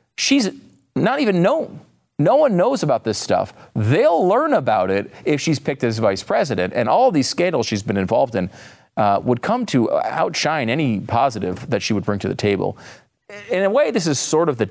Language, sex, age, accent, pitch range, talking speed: English, male, 30-49, American, 105-155 Hz, 205 wpm